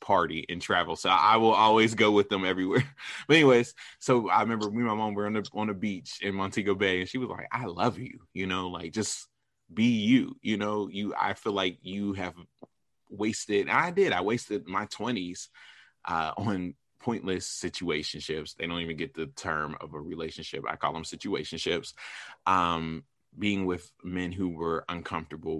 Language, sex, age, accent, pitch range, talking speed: English, male, 20-39, American, 85-100 Hz, 195 wpm